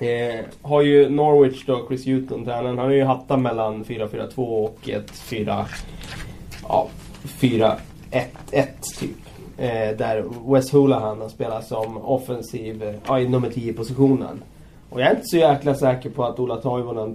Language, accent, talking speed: Swedish, native, 140 wpm